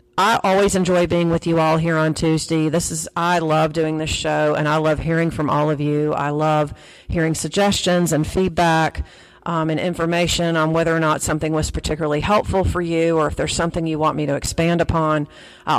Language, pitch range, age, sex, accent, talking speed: English, 155-175 Hz, 40-59, female, American, 210 wpm